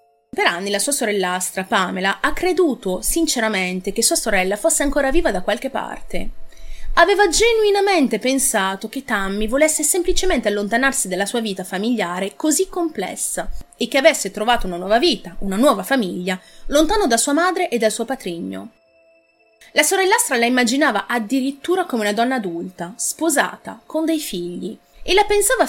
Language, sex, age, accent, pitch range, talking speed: Italian, female, 30-49, native, 195-295 Hz, 155 wpm